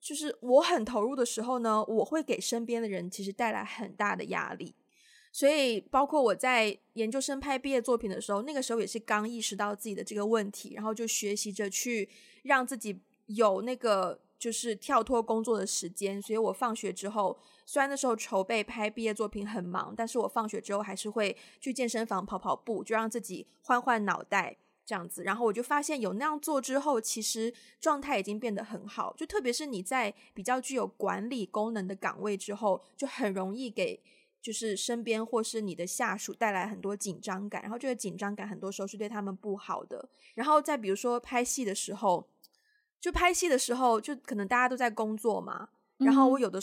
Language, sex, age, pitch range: Chinese, female, 20-39, 205-250 Hz